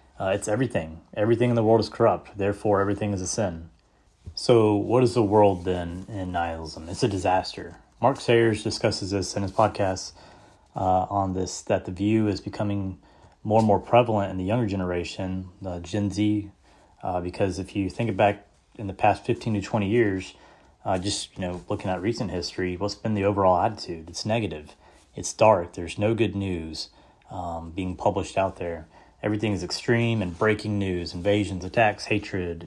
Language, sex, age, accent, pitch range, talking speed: English, male, 30-49, American, 90-105 Hz, 180 wpm